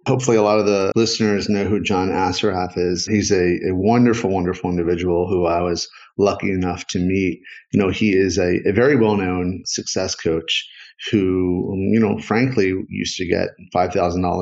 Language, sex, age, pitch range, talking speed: English, male, 40-59, 90-105 Hz, 180 wpm